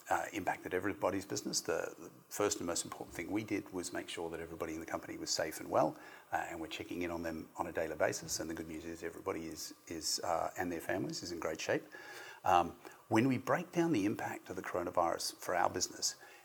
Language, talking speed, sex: English, 235 wpm, male